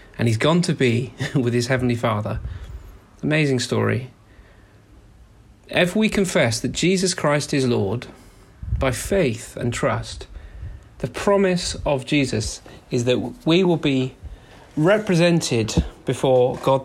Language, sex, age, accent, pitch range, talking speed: English, male, 30-49, British, 110-145 Hz, 125 wpm